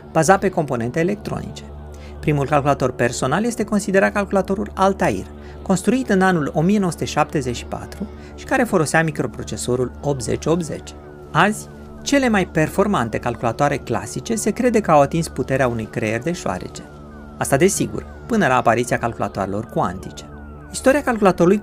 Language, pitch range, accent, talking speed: Romanian, 105-175 Hz, native, 125 wpm